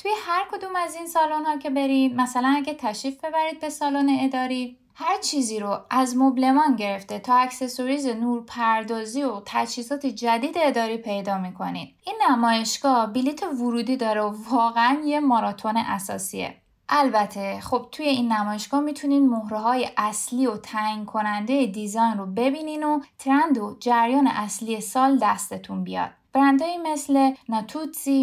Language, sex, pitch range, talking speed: Persian, female, 225-285 Hz, 140 wpm